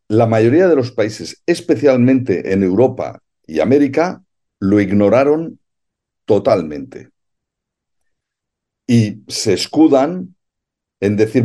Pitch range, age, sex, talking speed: 100-140 Hz, 60-79, male, 95 wpm